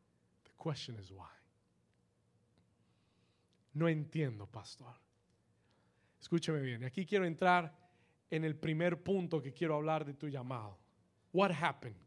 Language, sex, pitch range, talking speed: Spanish, male, 115-165 Hz, 115 wpm